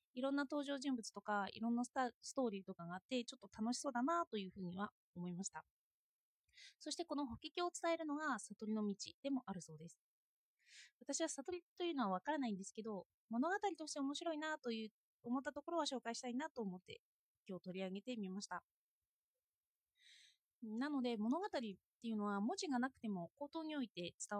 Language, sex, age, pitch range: Japanese, female, 20-39, 200-305 Hz